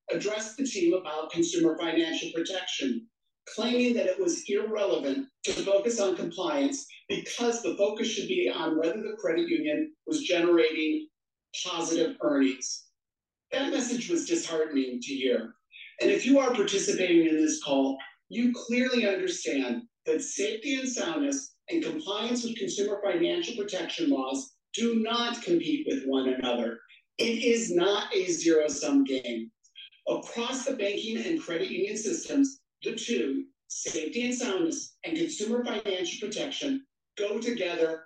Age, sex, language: 40-59, male, English